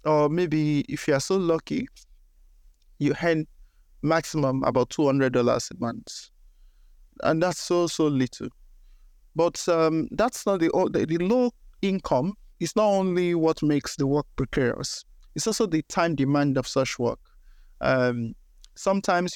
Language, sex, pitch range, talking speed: English, male, 135-165 Hz, 145 wpm